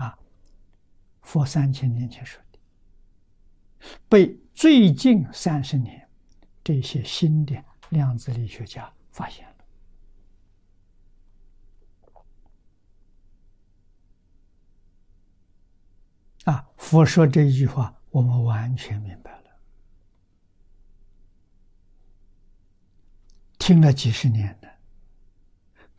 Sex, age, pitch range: male, 60-79, 95-125 Hz